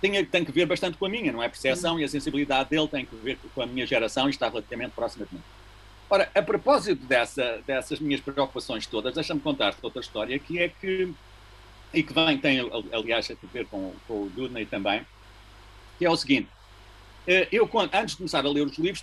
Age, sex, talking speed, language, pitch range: 50-69, male, 215 wpm, Portuguese, 110-175 Hz